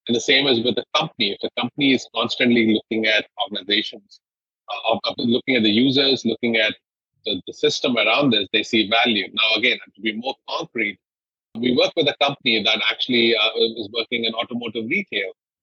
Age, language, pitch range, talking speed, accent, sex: 30-49, English, 110-130 Hz, 190 wpm, Indian, male